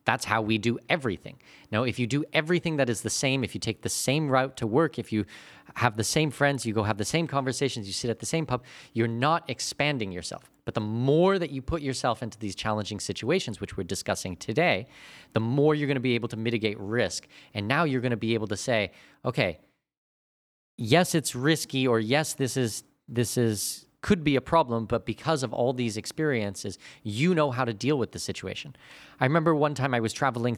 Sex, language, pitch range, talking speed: male, English, 105-140 Hz, 220 wpm